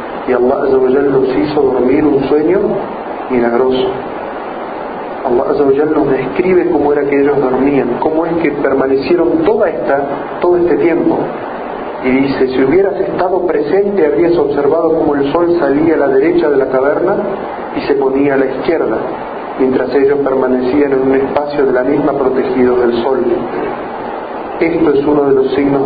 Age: 40-59